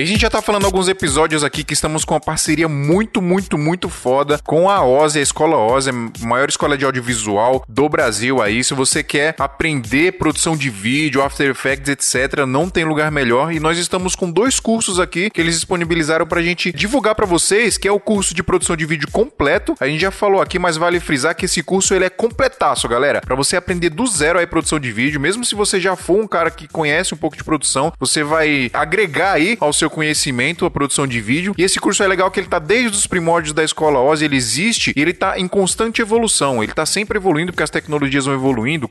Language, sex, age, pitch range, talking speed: Portuguese, male, 20-39, 150-195 Hz, 230 wpm